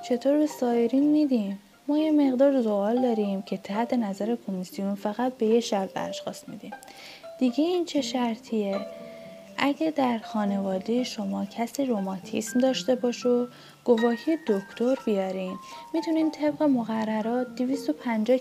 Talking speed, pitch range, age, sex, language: 125 wpm, 200-260 Hz, 10-29, female, Persian